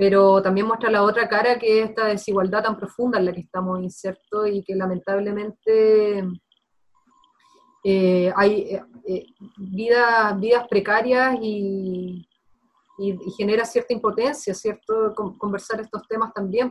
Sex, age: female, 30-49